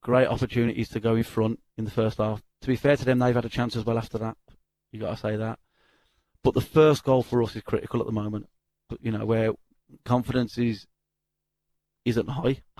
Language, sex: English, male